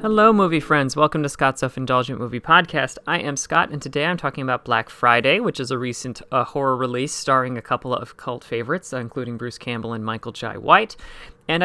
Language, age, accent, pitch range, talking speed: English, 30-49, American, 120-165 Hz, 205 wpm